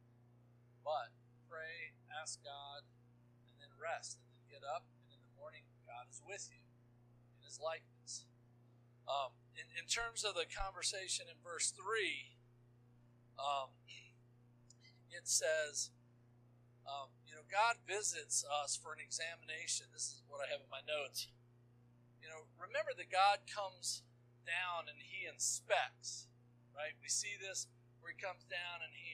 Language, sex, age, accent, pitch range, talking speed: English, male, 40-59, American, 120-155 Hz, 145 wpm